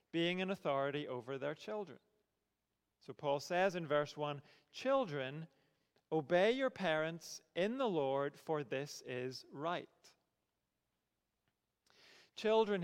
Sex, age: male, 40-59